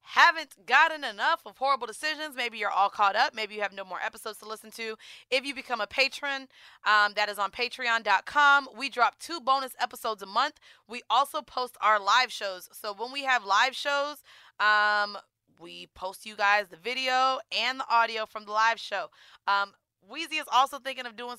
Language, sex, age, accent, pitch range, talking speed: English, female, 20-39, American, 205-260 Hz, 195 wpm